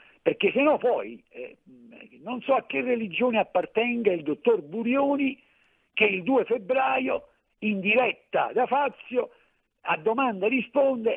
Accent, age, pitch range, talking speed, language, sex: native, 50-69, 165-265 Hz, 130 wpm, Italian, male